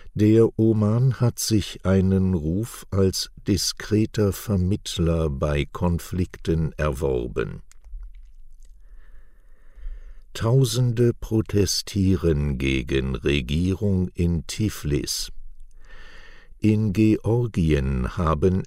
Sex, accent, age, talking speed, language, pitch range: male, German, 60-79, 70 wpm, English, 75-100 Hz